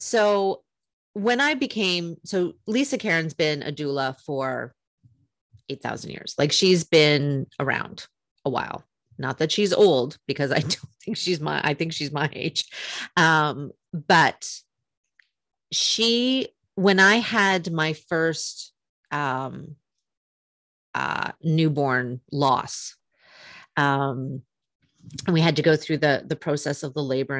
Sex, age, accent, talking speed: female, 30-49, American, 125 wpm